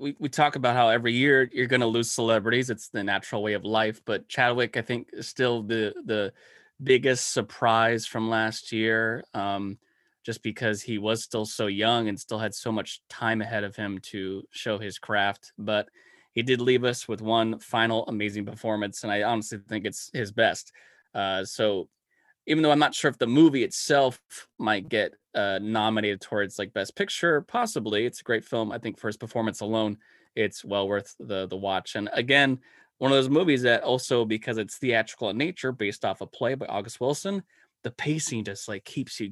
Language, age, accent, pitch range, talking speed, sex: English, 20-39, American, 105-120 Hz, 200 wpm, male